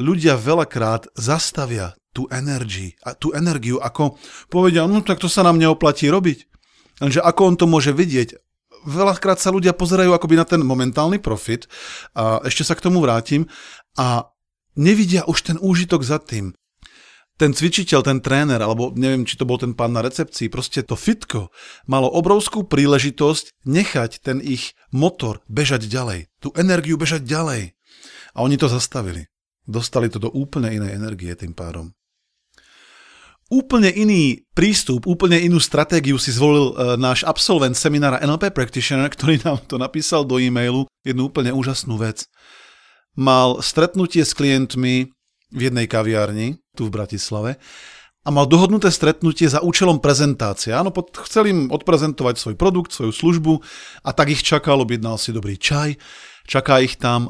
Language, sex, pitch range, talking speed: Slovak, male, 125-165 Hz, 150 wpm